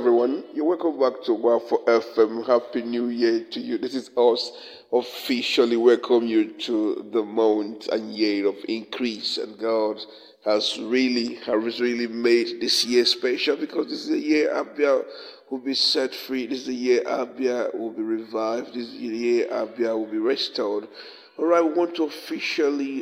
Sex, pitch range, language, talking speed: male, 120-170 Hz, English, 175 wpm